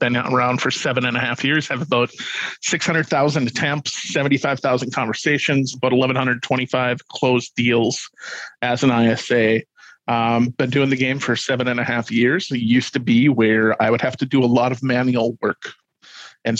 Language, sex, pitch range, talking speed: English, male, 120-135 Hz, 175 wpm